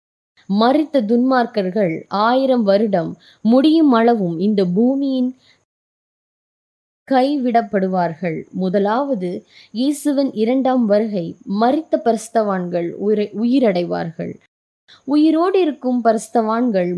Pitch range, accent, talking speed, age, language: 190-255 Hz, native, 70 wpm, 20-39, Tamil